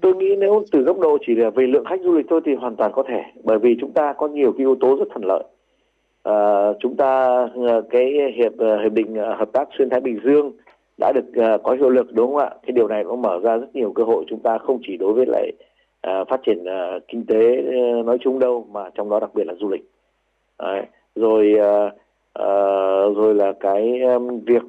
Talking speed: 230 wpm